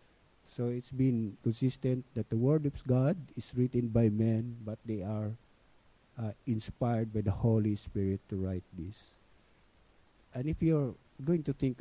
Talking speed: 160 wpm